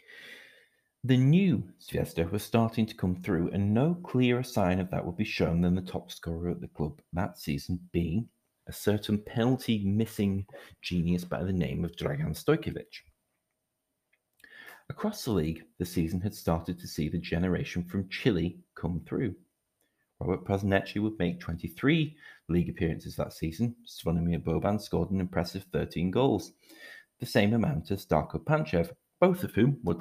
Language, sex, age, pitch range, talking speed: English, male, 40-59, 90-120 Hz, 160 wpm